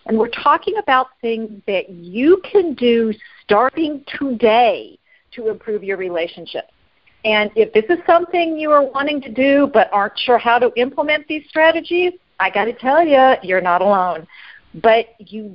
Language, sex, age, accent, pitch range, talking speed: English, female, 50-69, American, 190-250 Hz, 165 wpm